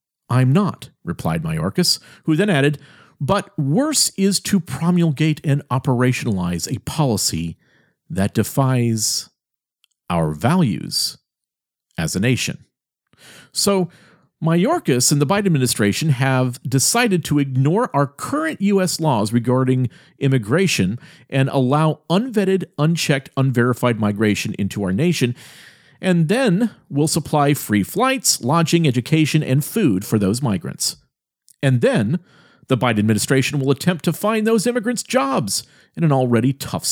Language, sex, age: English, male, 50-69